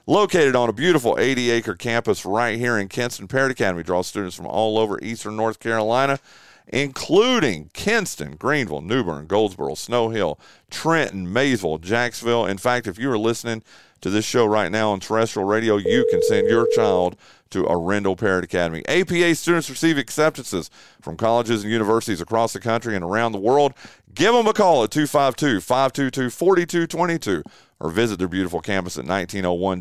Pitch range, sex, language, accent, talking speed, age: 105-165 Hz, male, English, American, 165 wpm, 40-59